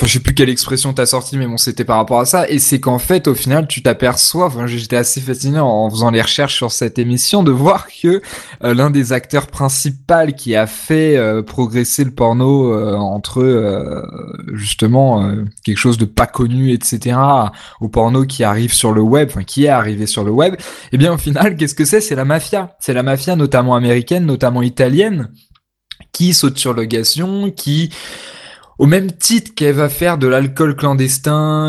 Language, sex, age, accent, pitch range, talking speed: French, male, 20-39, French, 120-155 Hz, 205 wpm